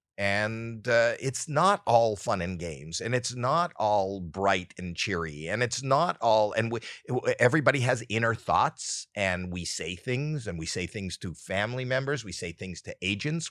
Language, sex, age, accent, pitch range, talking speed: English, male, 50-69, American, 95-130 Hz, 180 wpm